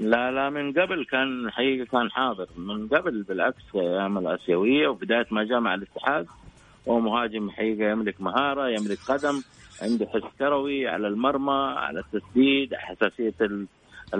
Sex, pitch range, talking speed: male, 110-135 Hz, 135 wpm